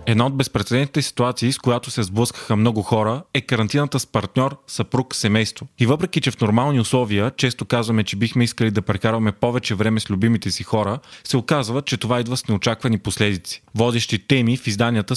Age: 30-49